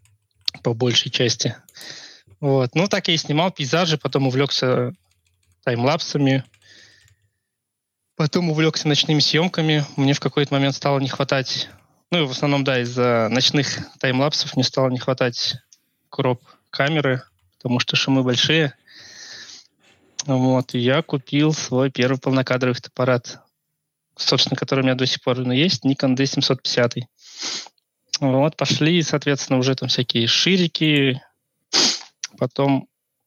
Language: Russian